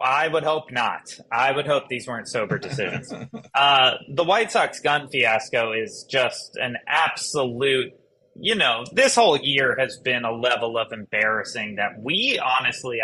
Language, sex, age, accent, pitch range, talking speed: English, male, 30-49, American, 130-190 Hz, 160 wpm